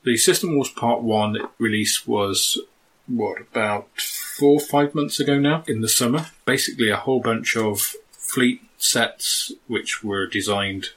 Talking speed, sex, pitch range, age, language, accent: 150 wpm, male, 105-125 Hz, 30-49, English, British